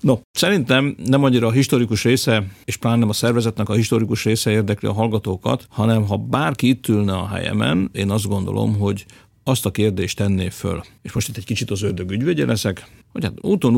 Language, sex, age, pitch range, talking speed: Hungarian, male, 50-69, 100-120 Hz, 195 wpm